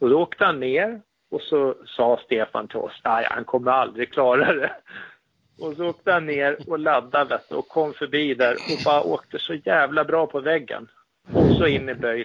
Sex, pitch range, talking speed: male, 125-155 Hz, 200 wpm